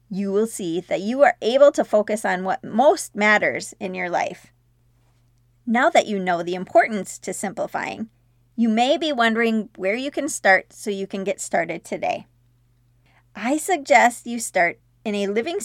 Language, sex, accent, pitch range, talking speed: English, female, American, 180-240 Hz, 175 wpm